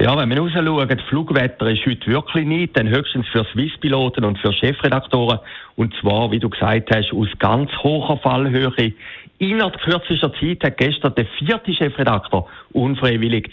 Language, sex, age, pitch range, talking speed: German, male, 60-79, 115-170 Hz, 155 wpm